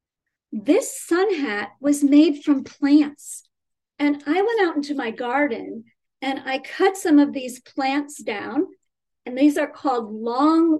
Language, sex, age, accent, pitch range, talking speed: English, female, 40-59, American, 230-300 Hz, 150 wpm